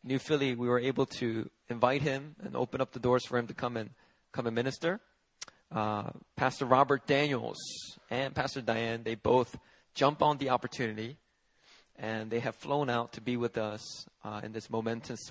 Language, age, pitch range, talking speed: English, 20-39, 120-160 Hz, 185 wpm